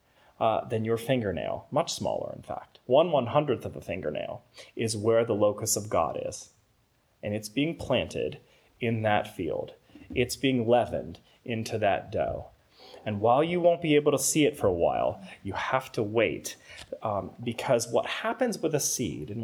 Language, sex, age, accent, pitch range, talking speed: English, male, 30-49, American, 110-130 Hz, 180 wpm